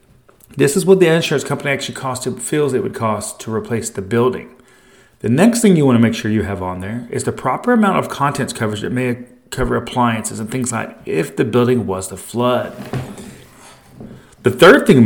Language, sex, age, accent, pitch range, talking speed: English, male, 30-49, American, 120-160 Hz, 205 wpm